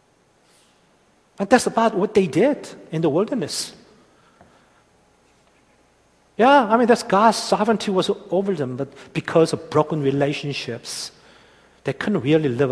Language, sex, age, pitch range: Korean, male, 50-69, 130-185 Hz